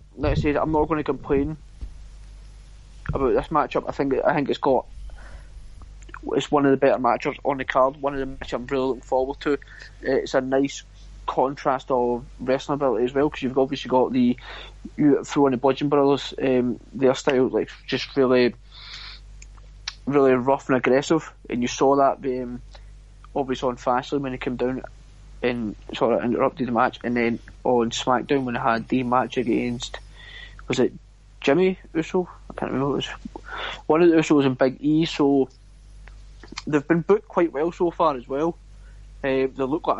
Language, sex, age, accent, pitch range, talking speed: English, male, 20-39, British, 125-150 Hz, 190 wpm